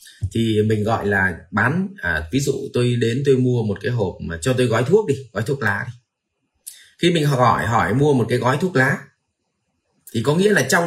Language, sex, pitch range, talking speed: Vietnamese, male, 110-150 Hz, 220 wpm